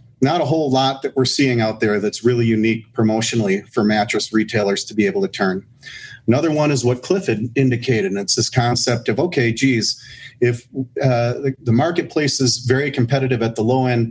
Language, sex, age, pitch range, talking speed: English, male, 40-59, 110-130 Hz, 195 wpm